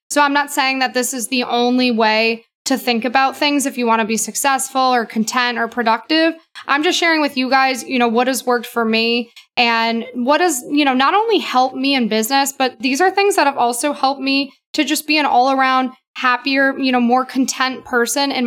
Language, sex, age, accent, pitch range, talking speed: English, female, 20-39, American, 240-285 Hz, 225 wpm